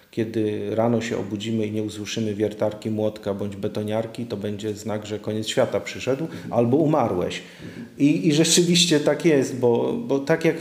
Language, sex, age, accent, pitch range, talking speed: Polish, male, 40-59, native, 115-135 Hz, 165 wpm